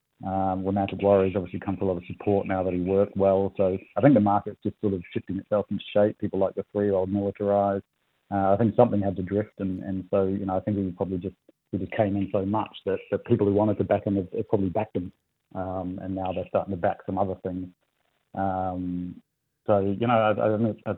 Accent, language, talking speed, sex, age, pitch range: Australian, English, 245 wpm, male, 30-49, 95-105 Hz